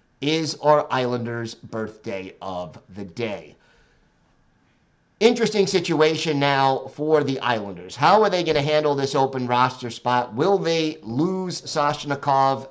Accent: American